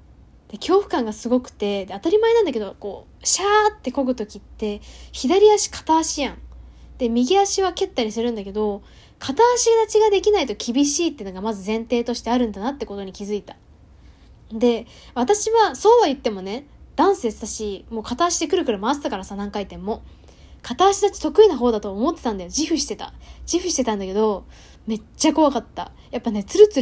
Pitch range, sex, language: 210-290 Hz, female, Japanese